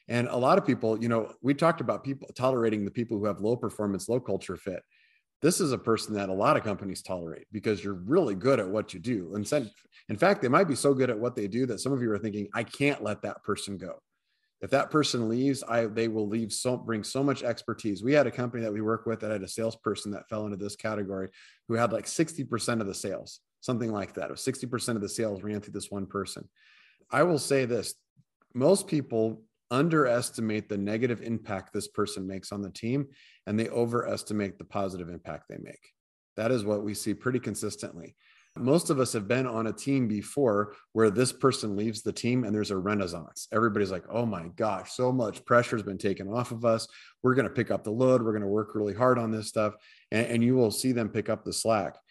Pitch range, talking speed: 105-125 Hz, 230 wpm